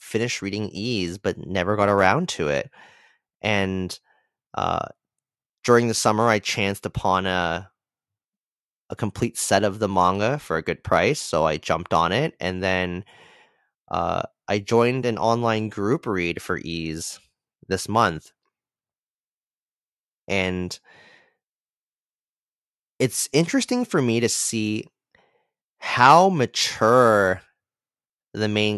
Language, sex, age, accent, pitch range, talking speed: English, male, 30-49, American, 95-125 Hz, 120 wpm